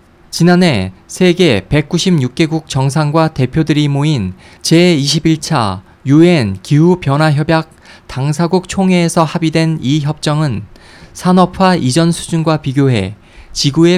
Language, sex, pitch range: Korean, male, 115-165 Hz